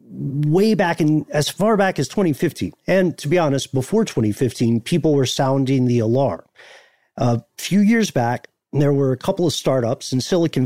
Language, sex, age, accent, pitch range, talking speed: English, male, 40-59, American, 130-165 Hz, 175 wpm